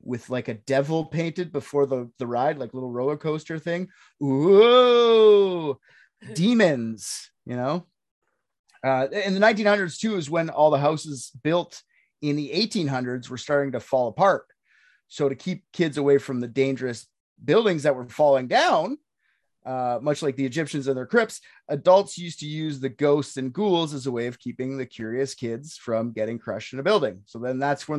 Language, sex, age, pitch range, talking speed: English, male, 30-49, 130-185 Hz, 180 wpm